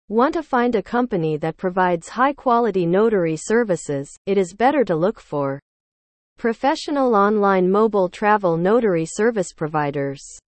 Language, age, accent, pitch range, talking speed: English, 40-59, American, 160-235 Hz, 130 wpm